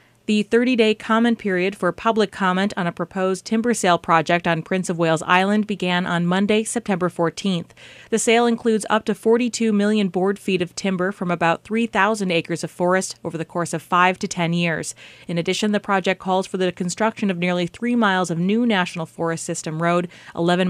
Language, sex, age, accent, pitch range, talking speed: English, female, 30-49, American, 170-205 Hz, 195 wpm